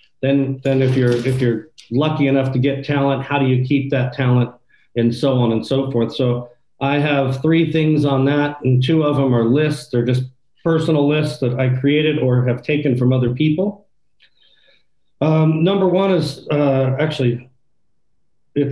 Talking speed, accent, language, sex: 180 wpm, American, English, male